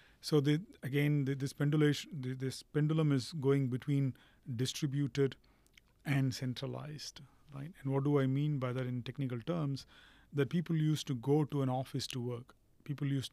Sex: male